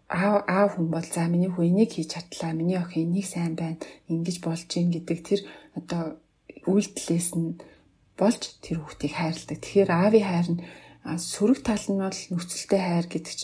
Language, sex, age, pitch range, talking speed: English, female, 40-59, 165-195 Hz, 155 wpm